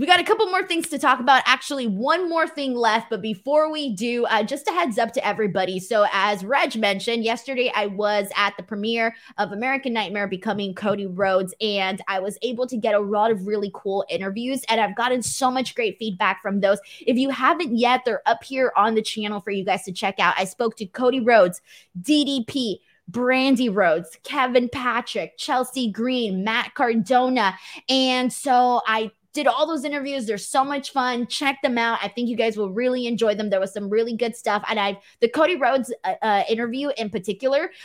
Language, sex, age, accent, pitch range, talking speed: English, female, 20-39, American, 200-255 Hz, 205 wpm